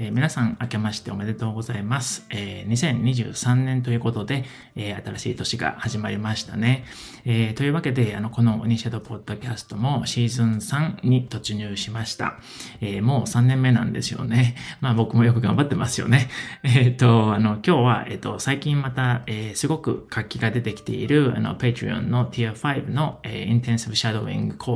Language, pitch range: Japanese, 110-130 Hz